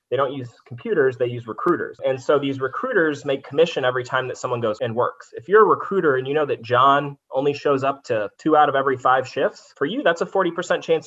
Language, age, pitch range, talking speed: English, 20-39, 125-170 Hz, 245 wpm